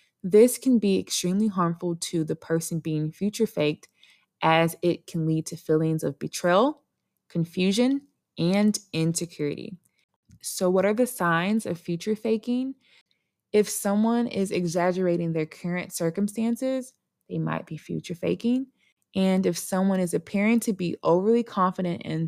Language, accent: English, American